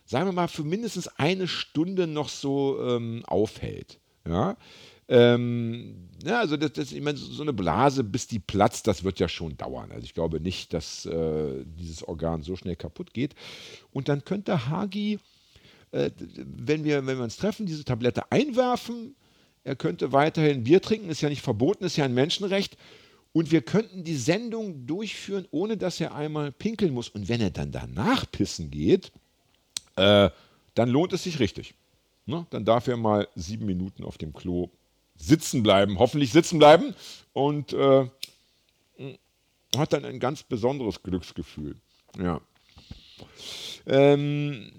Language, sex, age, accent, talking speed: German, male, 50-69, German, 155 wpm